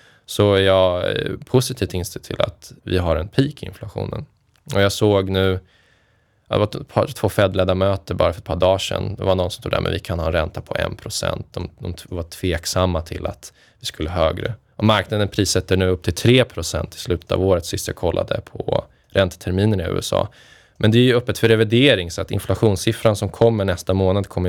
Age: 20-39